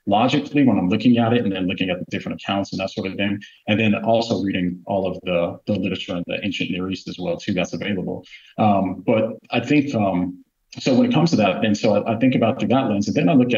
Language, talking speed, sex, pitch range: English, 270 wpm, male, 95-115 Hz